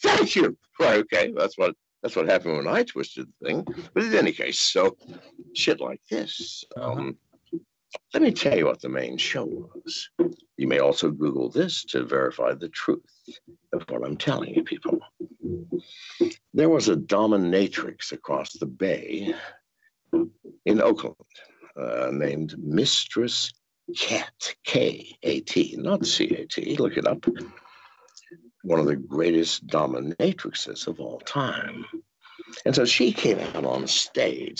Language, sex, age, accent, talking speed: English, male, 60-79, American, 140 wpm